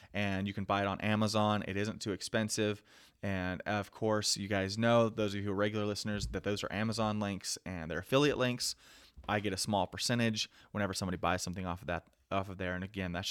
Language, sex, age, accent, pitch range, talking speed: English, male, 30-49, American, 95-110 Hz, 230 wpm